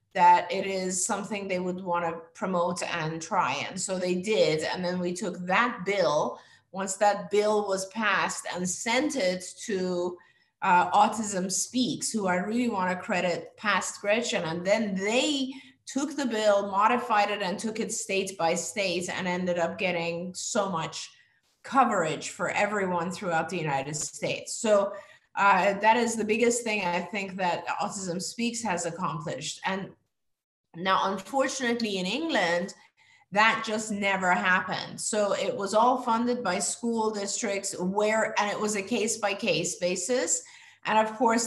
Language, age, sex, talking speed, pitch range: English, 30-49, female, 160 wpm, 180-225 Hz